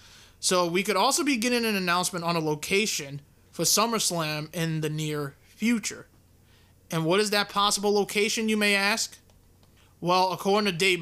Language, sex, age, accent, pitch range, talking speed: English, male, 20-39, American, 150-195 Hz, 165 wpm